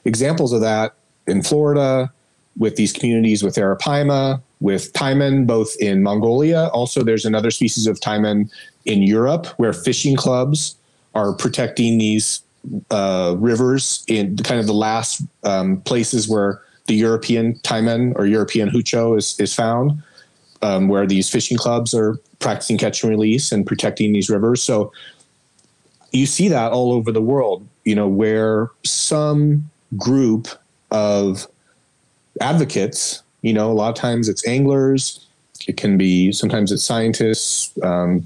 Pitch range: 110-135 Hz